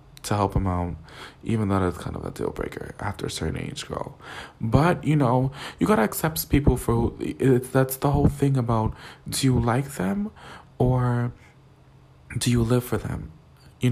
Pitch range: 110-135 Hz